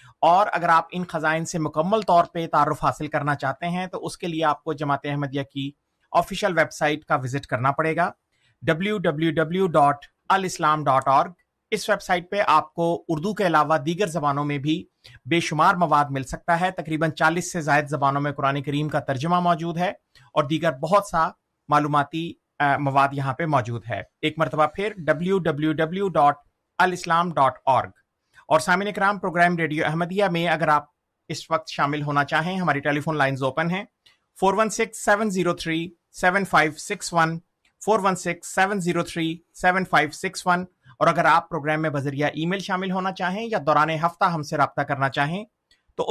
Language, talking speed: Urdu, 160 wpm